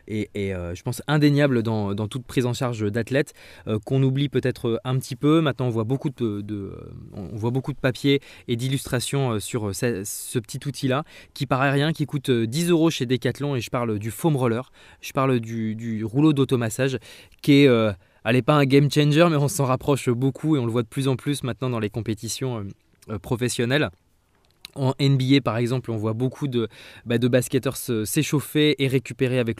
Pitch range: 115-140 Hz